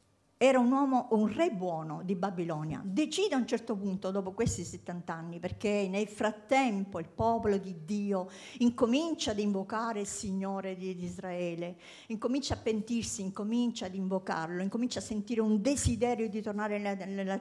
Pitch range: 185-245 Hz